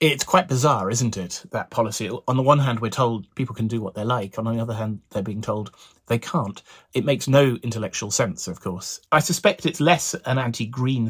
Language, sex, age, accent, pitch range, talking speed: English, male, 30-49, British, 105-130 Hz, 220 wpm